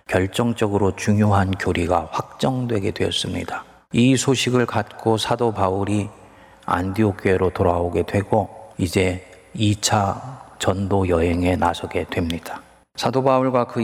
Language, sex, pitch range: Korean, male, 95-120 Hz